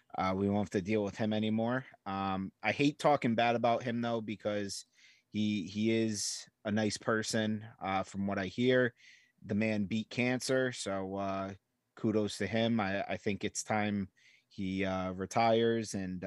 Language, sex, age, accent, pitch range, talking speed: English, male, 30-49, American, 100-120 Hz, 175 wpm